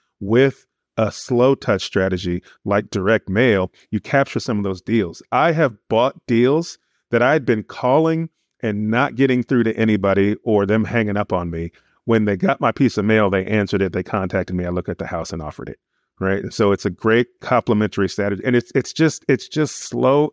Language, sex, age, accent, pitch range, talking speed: English, male, 30-49, American, 95-125 Hz, 205 wpm